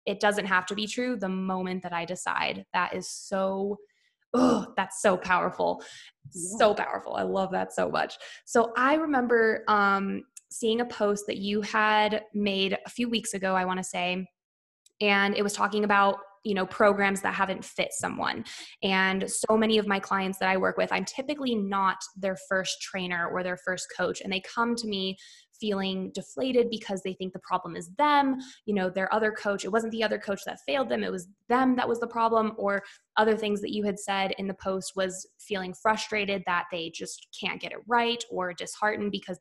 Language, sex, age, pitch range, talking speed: English, female, 20-39, 190-225 Hz, 205 wpm